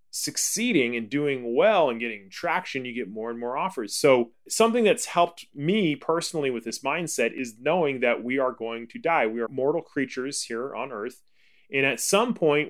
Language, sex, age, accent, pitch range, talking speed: English, male, 30-49, American, 130-175 Hz, 195 wpm